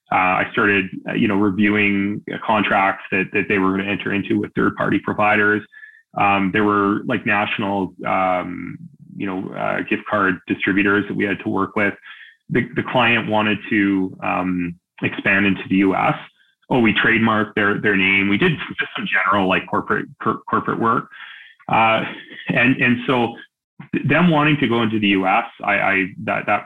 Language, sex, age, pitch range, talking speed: English, male, 30-49, 95-125 Hz, 175 wpm